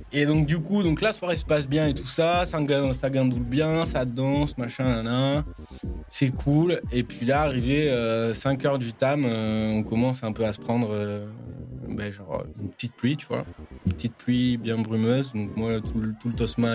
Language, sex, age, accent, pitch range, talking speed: French, male, 20-39, French, 105-135 Hz, 210 wpm